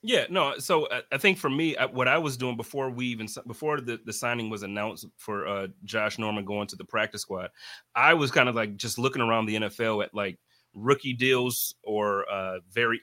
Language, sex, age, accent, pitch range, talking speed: English, male, 30-49, American, 110-125 Hz, 215 wpm